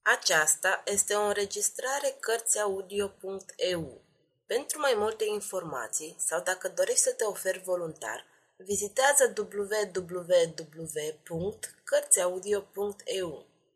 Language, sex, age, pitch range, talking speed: Romanian, female, 30-49, 185-255 Hz, 80 wpm